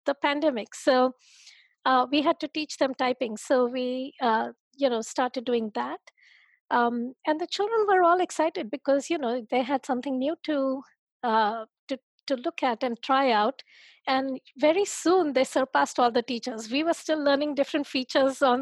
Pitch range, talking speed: 240-290 Hz, 175 wpm